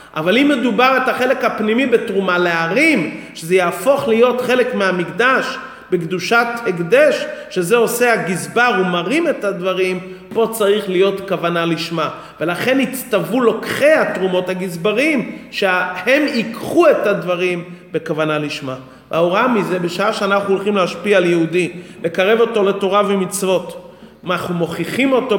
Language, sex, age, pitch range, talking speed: English, male, 30-49, 185-245 Hz, 125 wpm